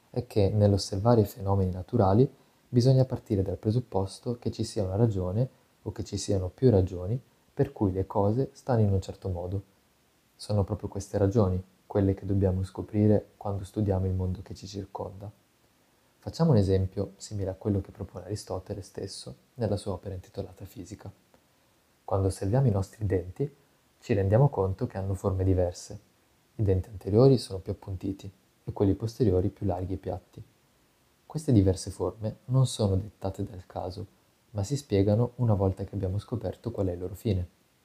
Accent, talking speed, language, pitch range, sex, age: native, 170 wpm, Italian, 95-110 Hz, male, 20-39